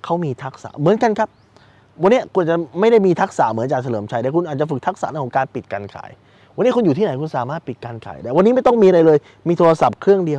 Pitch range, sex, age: 110-165 Hz, male, 20-39